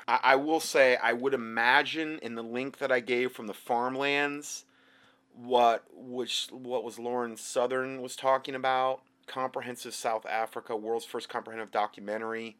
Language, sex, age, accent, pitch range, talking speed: English, male, 30-49, American, 95-130 Hz, 150 wpm